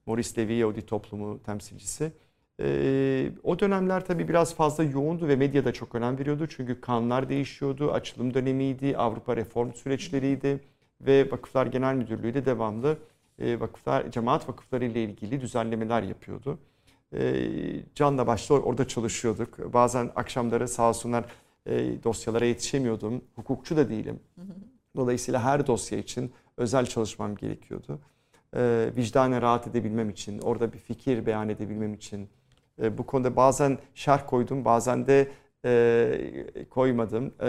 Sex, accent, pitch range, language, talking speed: male, native, 115-140 Hz, Turkish, 125 wpm